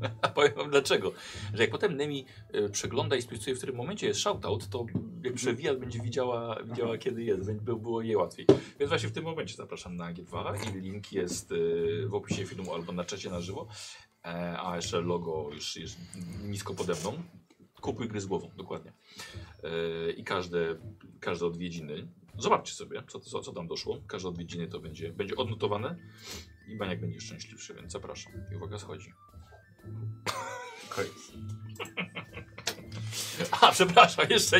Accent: native